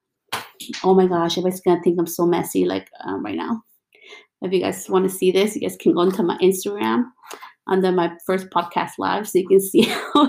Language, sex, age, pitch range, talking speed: English, female, 30-49, 155-210 Hz, 220 wpm